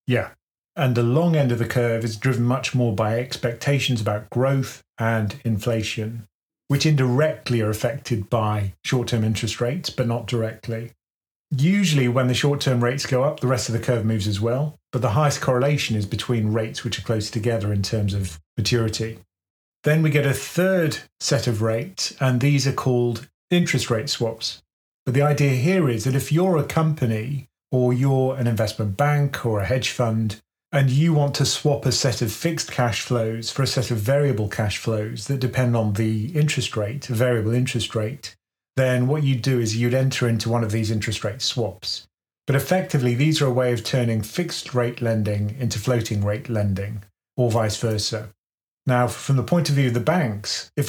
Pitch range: 110-140 Hz